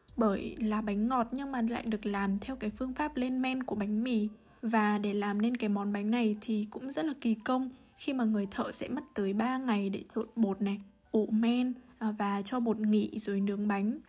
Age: 20-39